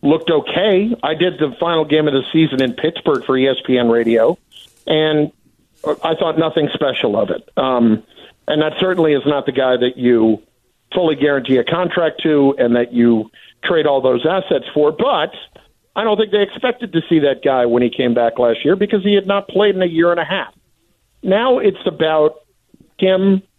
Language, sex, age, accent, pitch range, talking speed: English, male, 50-69, American, 130-170 Hz, 195 wpm